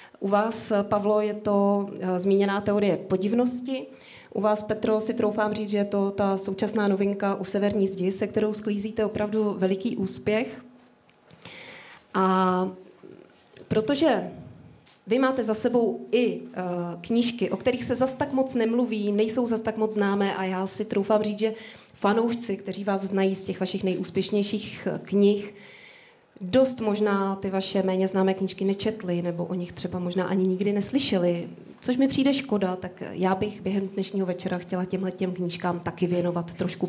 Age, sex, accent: 30-49, female, native